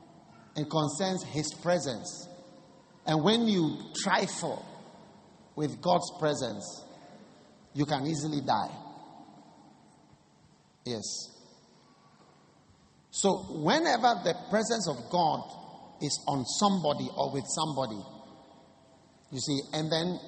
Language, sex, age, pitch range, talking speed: English, male, 50-69, 165-225 Hz, 100 wpm